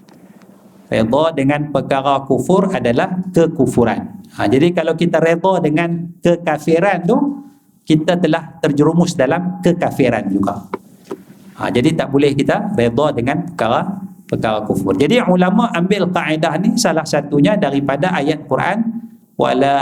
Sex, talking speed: male, 120 wpm